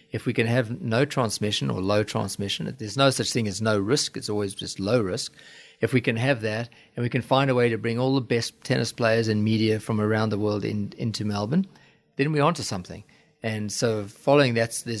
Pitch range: 105-120 Hz